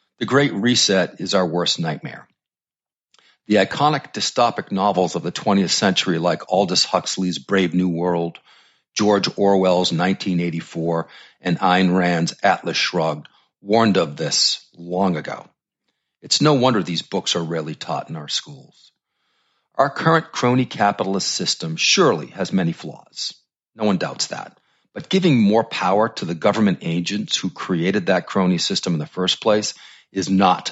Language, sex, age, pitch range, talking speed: English, male, 50-69, 85-110 Hz, 150 wpm